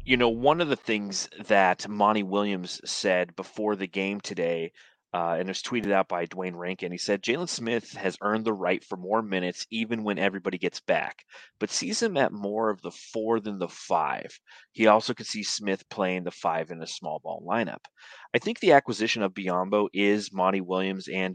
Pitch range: 95-110 Hz